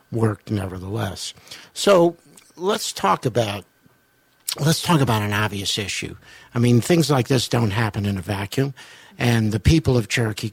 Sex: male